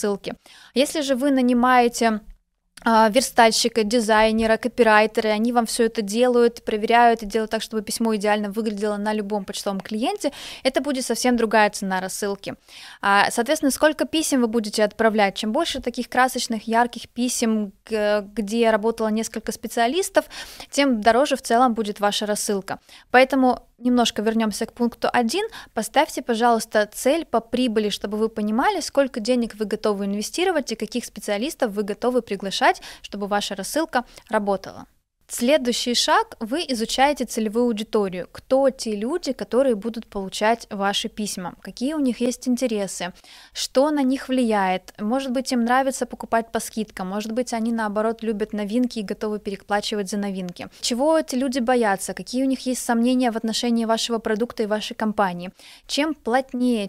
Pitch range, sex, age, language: 215-255 Hz, female, 20-39, Russian